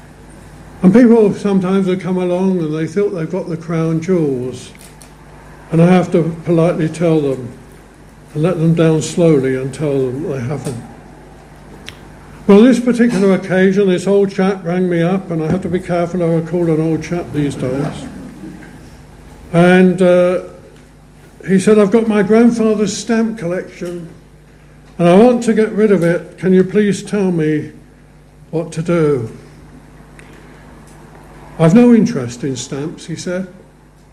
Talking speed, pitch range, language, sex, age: 155 wpm, 160-210 Hz, English, male, 60-79